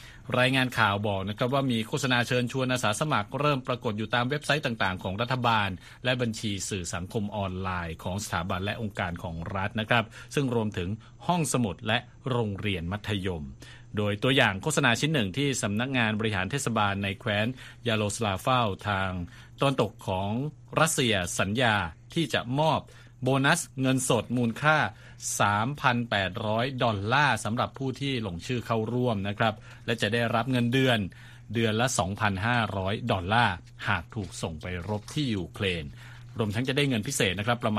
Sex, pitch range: male, 105-125 Hz